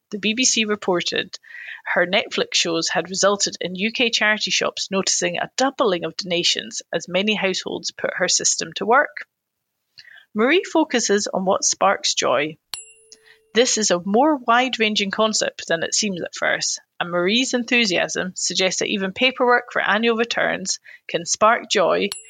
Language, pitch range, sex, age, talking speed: English, 190-255 Hz, female, 30-49, 150 wpm